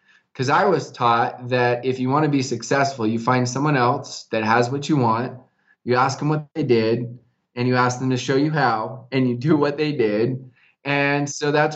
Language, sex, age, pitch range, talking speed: English, male, 20-39, 115-135 Hz, 220 wpm